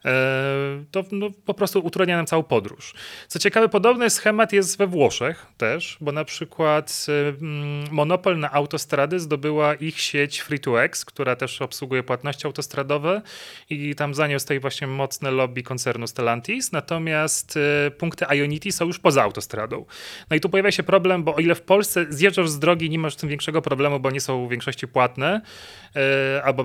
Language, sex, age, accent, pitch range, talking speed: Polish, male, 30-49, native, 140-175 Hz, 165 wpm